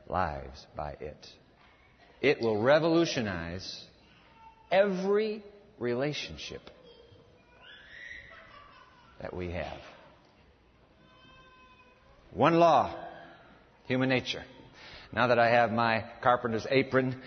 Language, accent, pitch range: English, American, 115-155 Hz